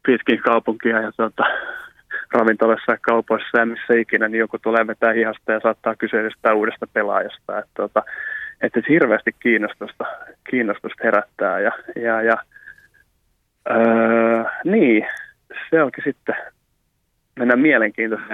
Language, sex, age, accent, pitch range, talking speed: Finnish, male, 20-39, native, 110-120 Hz, 125 wpm